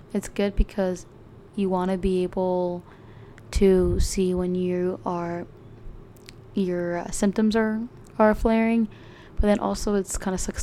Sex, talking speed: female, 145 wpm